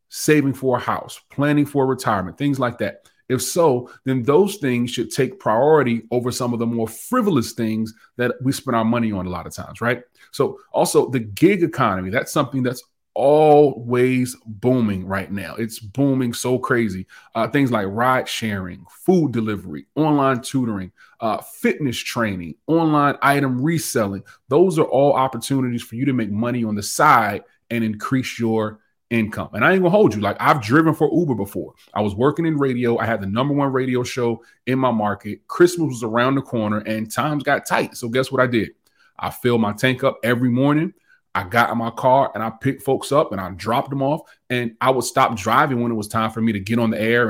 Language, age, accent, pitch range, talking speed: English, 30-49, American, 110-135 Hz, 205 wpm